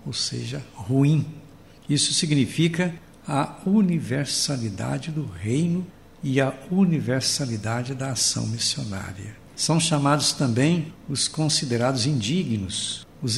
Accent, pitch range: Brazilian, 115-165 Hz